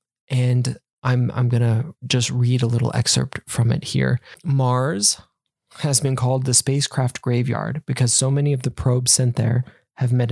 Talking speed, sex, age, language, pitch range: 175 wpm, male, 20-39, English, 125-140 Hz